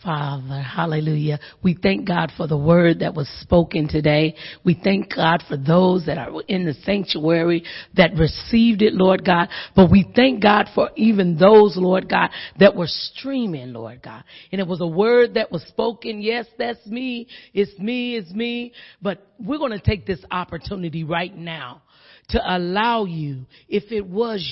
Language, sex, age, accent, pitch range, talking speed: English, female, 40-59, American, 180-230 Hz, 175 wpm